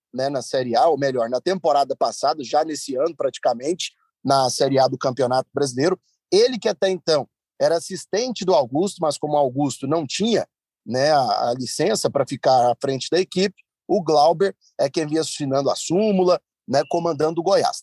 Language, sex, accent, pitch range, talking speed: Portuguese, male, Brazilian, 145-195 Hz, 185 wpm